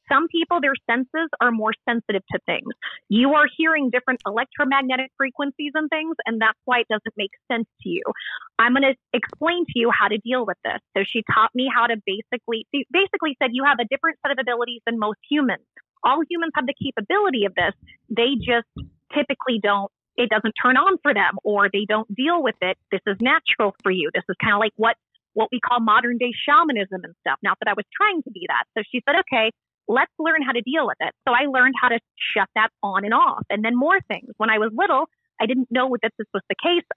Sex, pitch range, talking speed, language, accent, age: female, 220-300 Hz, 230 wpm, English, American, 30-49